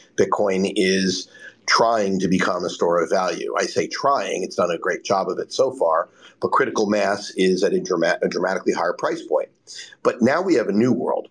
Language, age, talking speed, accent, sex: English, 50-69, 210 wpm, American, male